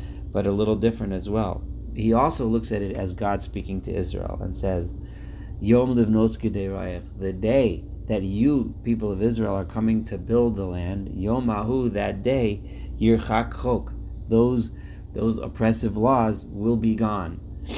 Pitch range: 95-120 Hz